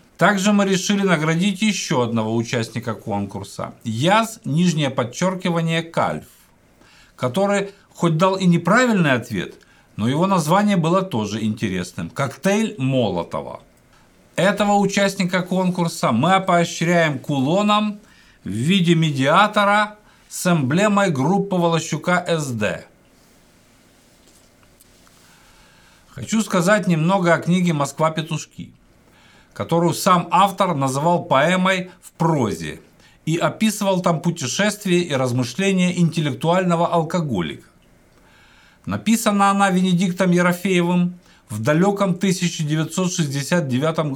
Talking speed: 90 wpm